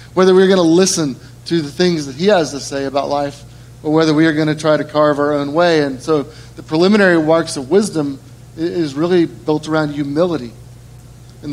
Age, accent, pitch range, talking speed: 30-49, American, 135-185 Hz, 210 wpm